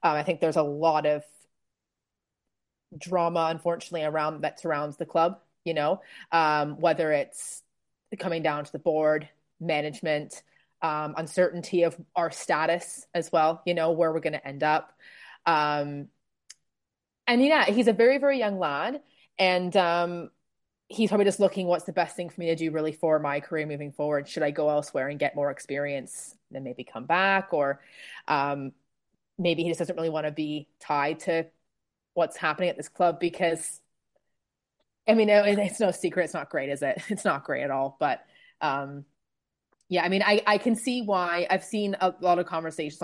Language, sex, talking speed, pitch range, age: English, female, 185 wpm, 150-180 Hz, 30-49